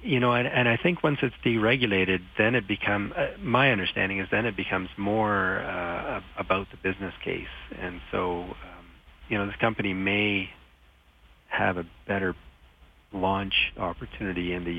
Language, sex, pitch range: English, male, 85-105 Hz